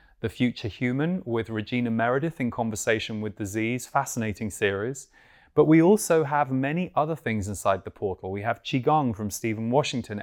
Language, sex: English, male